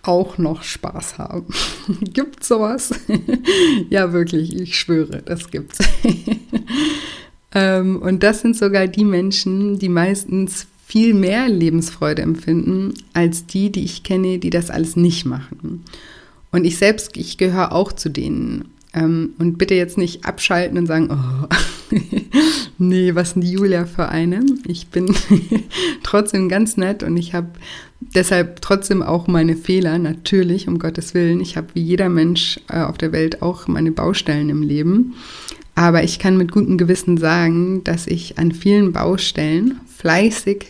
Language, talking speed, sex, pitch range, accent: German, 150 wpm, female, 165-200 Hz, German